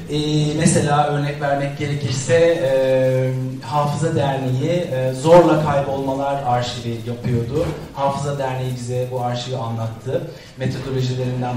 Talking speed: 105 wpm